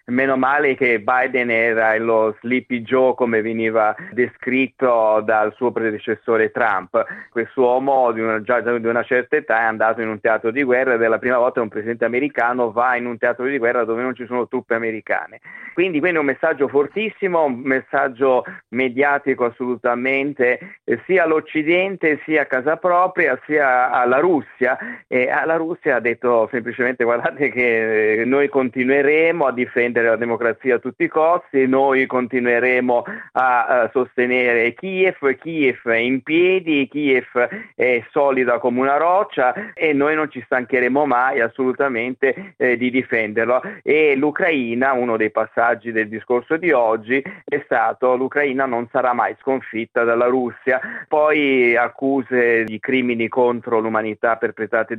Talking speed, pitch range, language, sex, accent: 145 wpm, 115-140 Hz, Italian, male, native